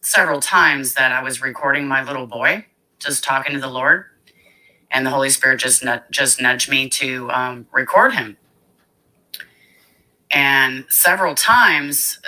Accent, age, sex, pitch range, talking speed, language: American, 30-49, female, 120-135 Hz, 140 wpm, English